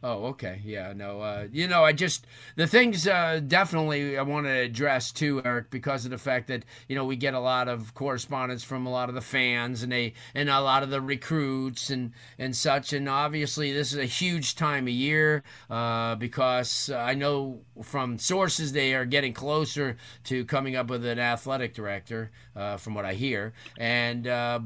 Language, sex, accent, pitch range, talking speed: English, male, American, 115-140 Hz, 200 wpm